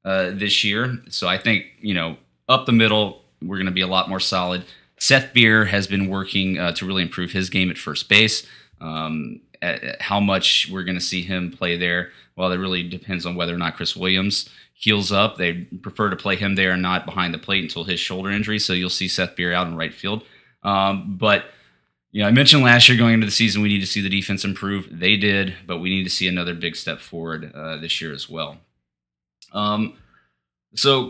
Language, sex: English, male